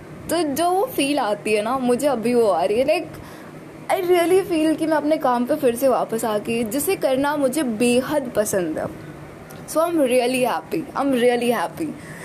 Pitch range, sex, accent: 220-280 Hz, female, native